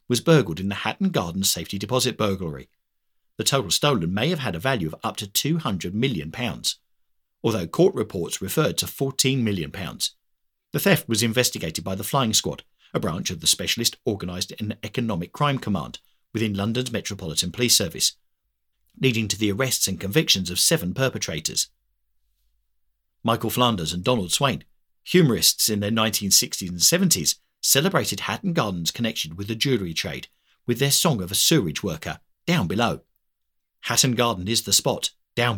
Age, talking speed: 50-69, 160 wpm